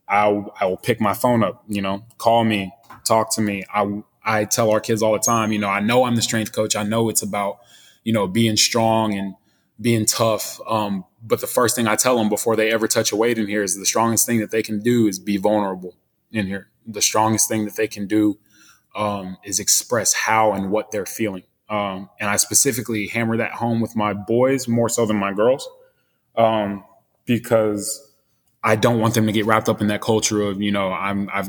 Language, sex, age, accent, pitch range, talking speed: English, male, 20-39, American, 100-115 Hz, 225 wpm